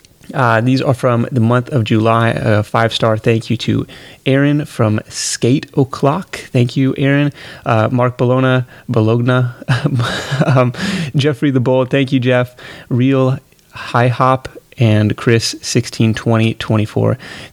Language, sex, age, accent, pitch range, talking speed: English, male, 30-49, American, 115-135 Hz, 135 wpm